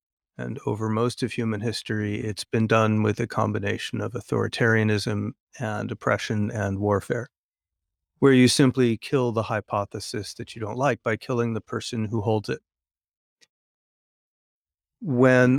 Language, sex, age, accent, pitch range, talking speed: Dutch, male, 40-59, American, 105-125 Hz, 140 wpm